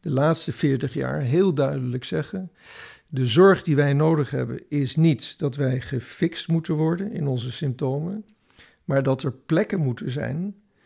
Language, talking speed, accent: Dutch, 160 wpm, Dutch